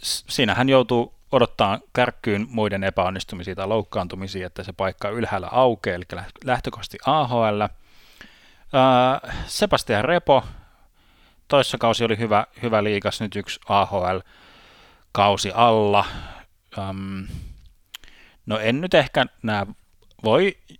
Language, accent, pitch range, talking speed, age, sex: Finnish, native, 95-115 Hz, 100 wpm, 30-49, male